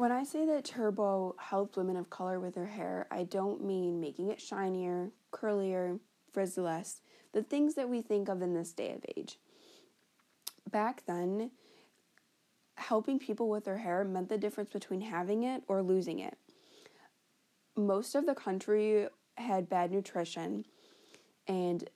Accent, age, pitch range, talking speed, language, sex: American, 20-39, 175-205 Hz, 150 wpm, English, female